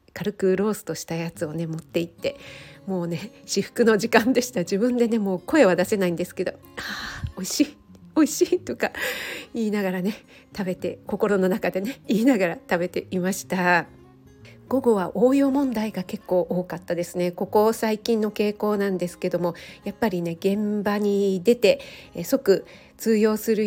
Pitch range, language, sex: 180-230 Hz, Japanese, female